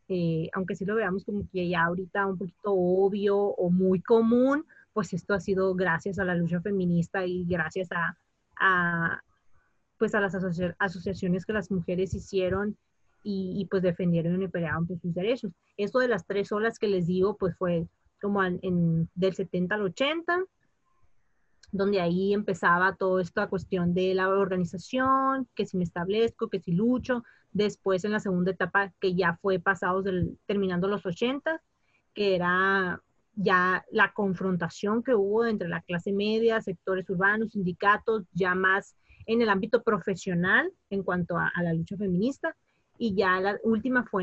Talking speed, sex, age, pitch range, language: 165 wpm, female, 30-49, 185-215 Hz, Spanish